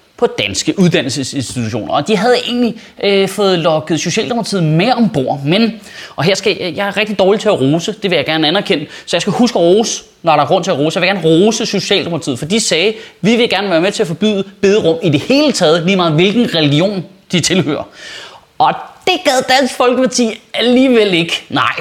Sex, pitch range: male, 165-240 Hz